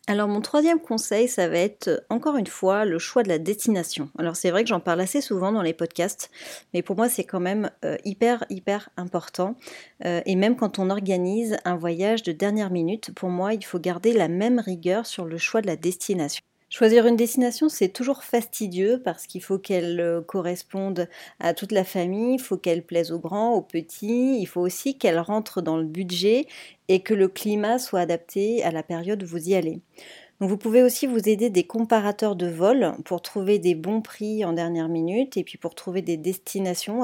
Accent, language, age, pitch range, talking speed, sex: French, French, 40-59, 175-215 Hz, 205 wpm, female